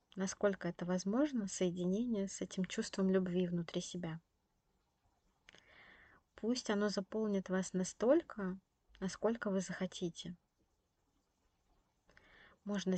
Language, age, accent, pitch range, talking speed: Russian, 20-39, native, 175-195 Hz, 90 wpm